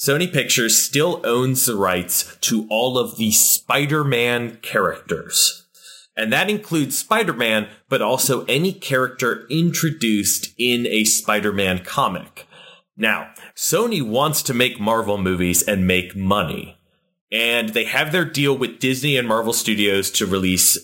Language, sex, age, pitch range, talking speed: English, male, 30-49, 110-155 Hz, 135 wpm